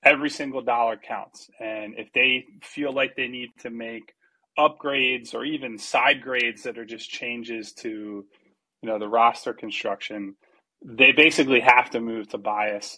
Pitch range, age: 115-135 Hz, 20-39